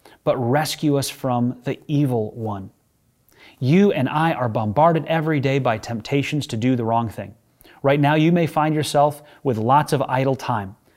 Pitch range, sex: 125-165 Hz, male